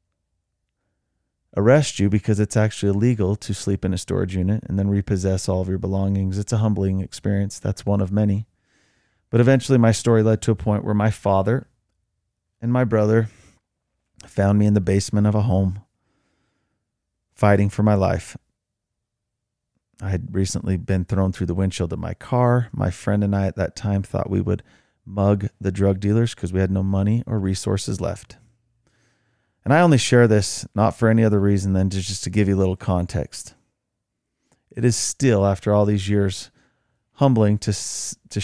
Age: 30-49